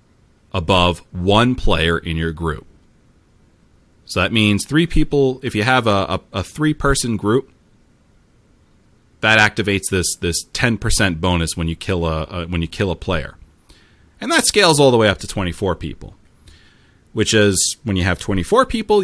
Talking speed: 175 wpm